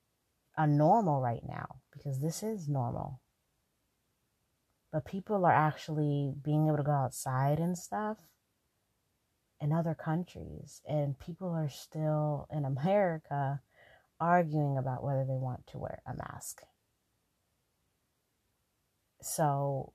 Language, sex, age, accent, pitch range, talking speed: English, female, 30-49, American, 130-150 Hz, 115 wpm